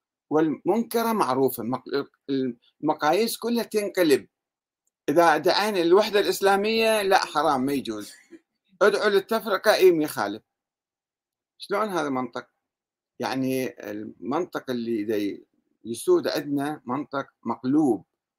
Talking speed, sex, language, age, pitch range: 90 wpm, male, Arabic, 50-69, 130-190 Hz